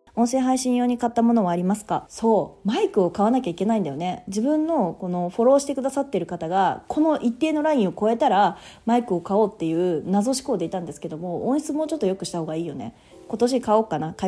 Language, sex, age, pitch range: Japanese, female, 30-49, 180-270 Hz